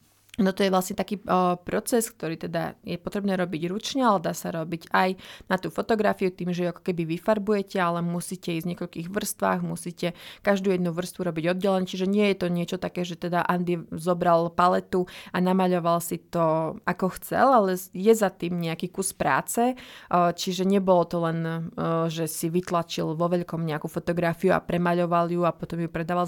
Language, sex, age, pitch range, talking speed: Slovak, female, 20-39, 170-190 Hz, 180 wpm